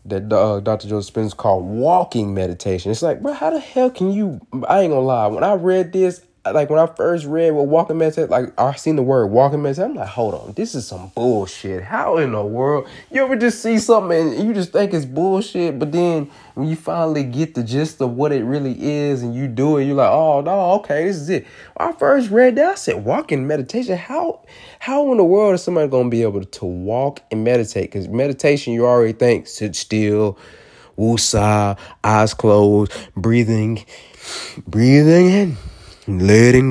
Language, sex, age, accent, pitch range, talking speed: English, male, 20-39, American, 105-150 Hz, 205 wpm